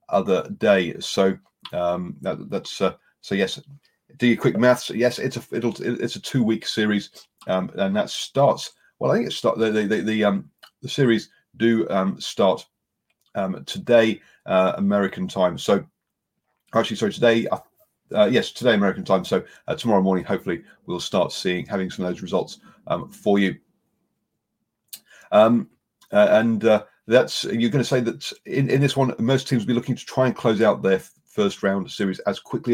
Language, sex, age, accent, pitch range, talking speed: English, male, 40-59, British, 95-125 Hz, 185 wpm